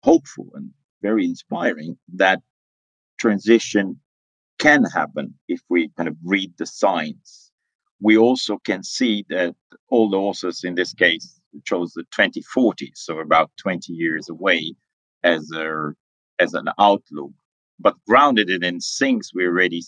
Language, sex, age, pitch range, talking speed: English, male, 50-69, 85-125 Hz, 135 wpm